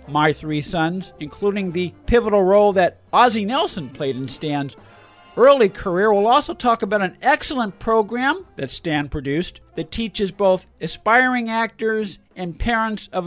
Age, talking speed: 50-69, 150 wpm